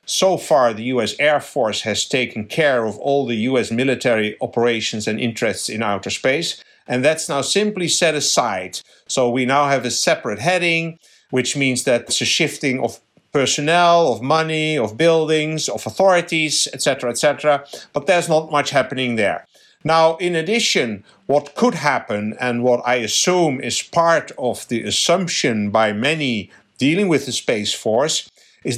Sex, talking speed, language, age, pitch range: male, 165 wpm, English, 60-79, 120-165 Hz